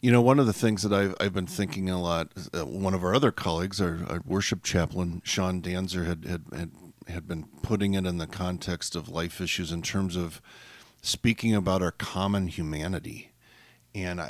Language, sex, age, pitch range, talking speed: English, male, 40-59, 90-110 Hz, 190 wpm